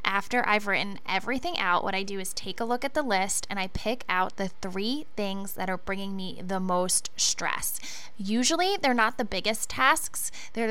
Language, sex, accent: English, female, American